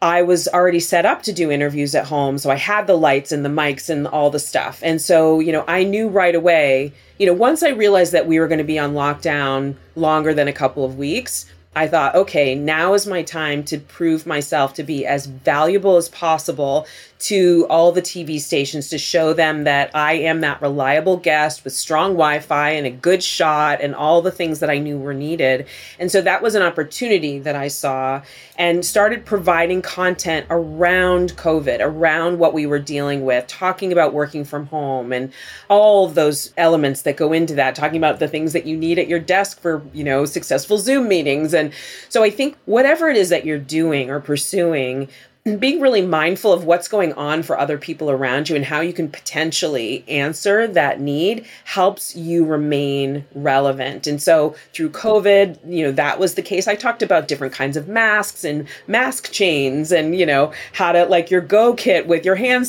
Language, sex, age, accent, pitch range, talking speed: English, female, 30-49, American, 145-180 Hz, 205 wpm